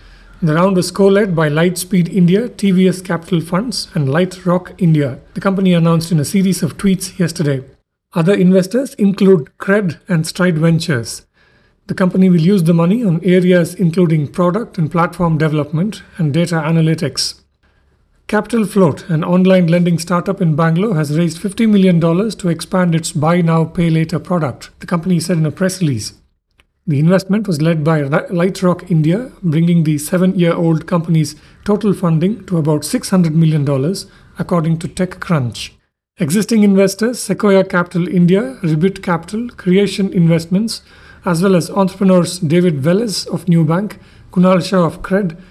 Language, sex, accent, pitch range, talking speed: English, male, Indian, 165-190 Hz, 150 wpm